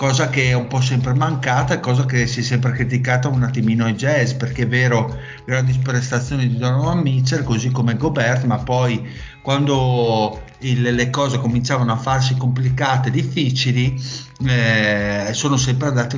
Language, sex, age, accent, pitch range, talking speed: Italian, male, 50-69, native, 120-135 Hz, 165 wpm